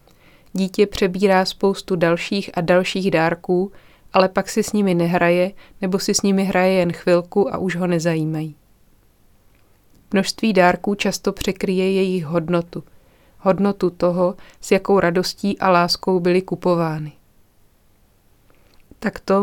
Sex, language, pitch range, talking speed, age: female, Czech, 175-195 Hz, 125 wpm, 30-49